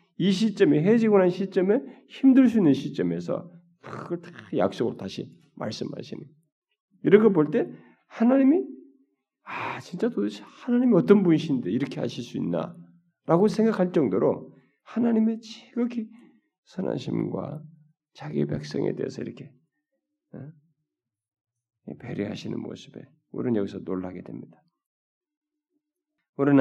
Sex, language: male, Korean